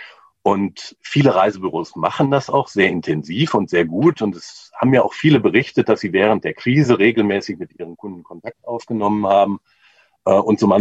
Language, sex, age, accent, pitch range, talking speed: German, male, 40-59, German, 100-120 Hz, 190 wpm